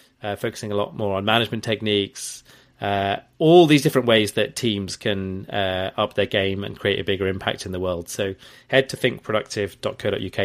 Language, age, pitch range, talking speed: English, 30-49, 100-135 Hz, 185 wpm